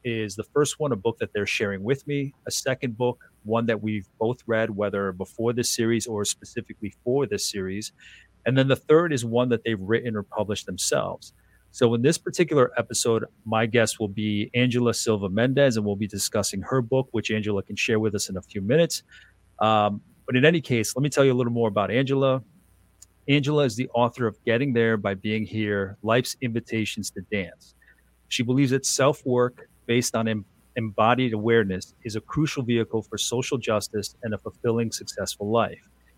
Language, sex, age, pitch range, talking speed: English, male, 40-59, 105-125 Hz, 190 wpm